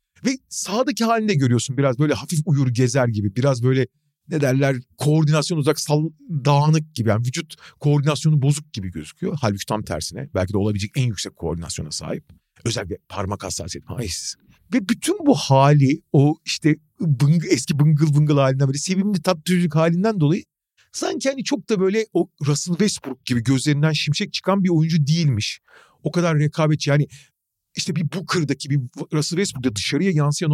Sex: male